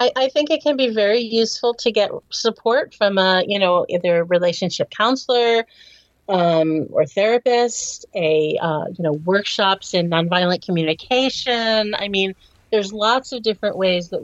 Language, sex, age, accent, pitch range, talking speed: English, female, 40-59, American, 170-215 Hz, 155 wpm